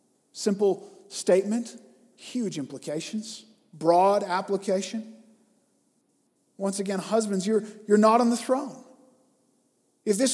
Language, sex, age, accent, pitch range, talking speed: English, male, 40-59, American, 190-250 Hz, 100 wpm